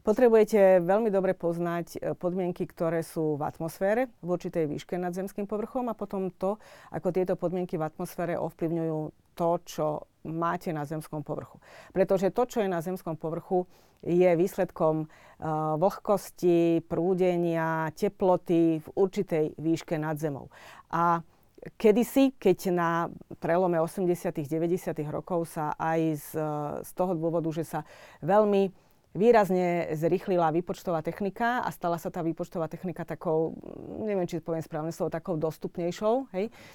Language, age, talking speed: Slovak, 40-59, 135 wpm